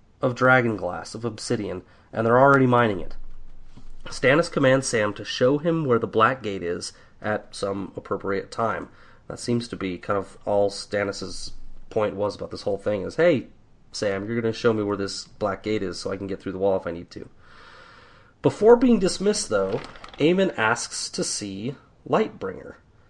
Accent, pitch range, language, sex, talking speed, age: American, 105-140 Hz, English, male, 185 wpm, 30-49